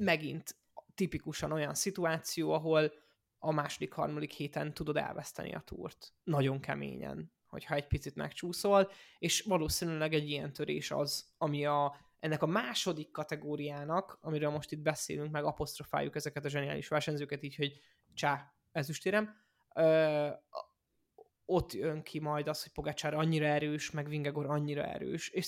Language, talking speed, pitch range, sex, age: Hungarian, 140 wpm, 145-165 Hz, male, 20-39